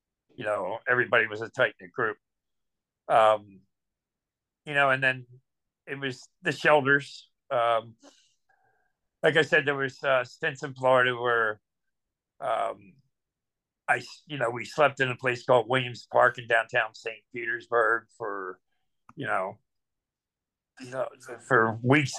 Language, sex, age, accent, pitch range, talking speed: English, male, 50-69, American, 115-145 Hz, 135 wpm